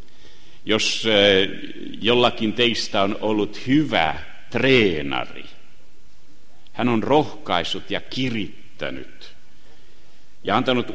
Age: 60-79